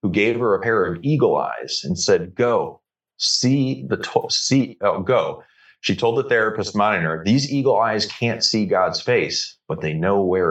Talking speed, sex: 175 wpm, male